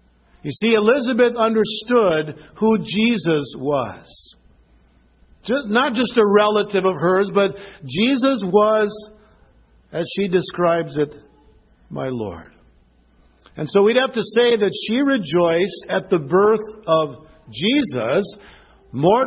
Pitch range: 170-225 Hz